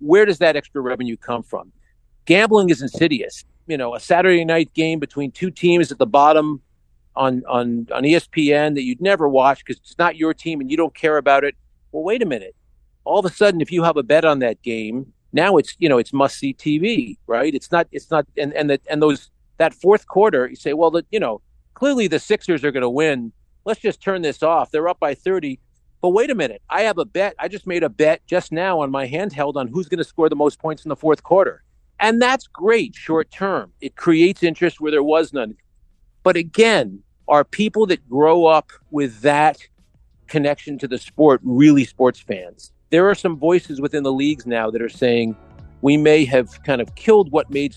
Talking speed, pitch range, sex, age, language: 220 wpm, 125-170 Hz, male, 50-69, English